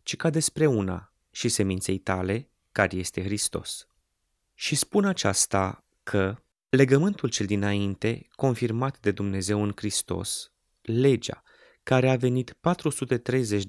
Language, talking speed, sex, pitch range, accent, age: Romanian, 120 wpm, male, 100-130 Hz, native, 20-39